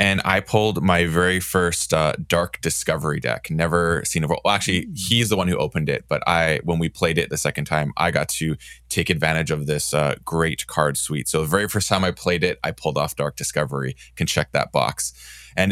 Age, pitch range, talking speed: 20-39, 75-90 Hz, 225 wpm